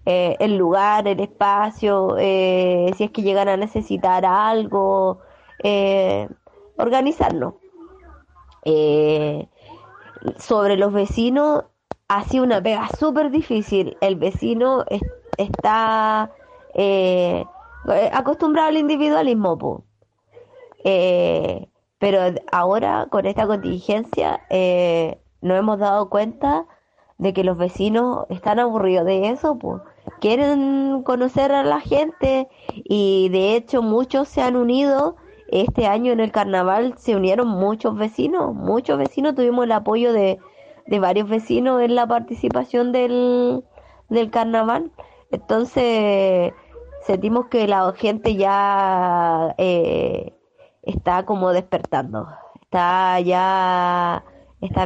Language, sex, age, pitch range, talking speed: Spanish, female, 20-39, 190-250 Hz, 110 wpm